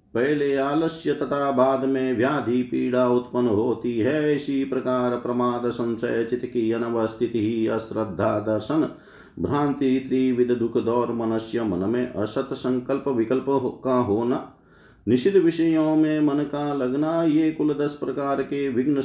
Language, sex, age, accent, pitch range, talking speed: Hindi, male, 50-69, native, 120-145 Hz, 140 wpm